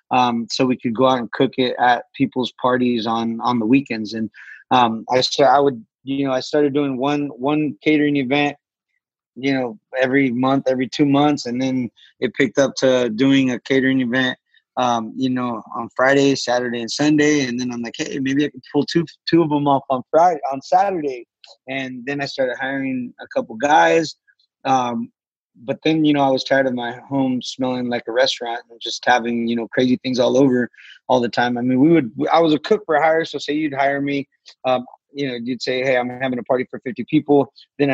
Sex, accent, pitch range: male, American, 125-145 Hz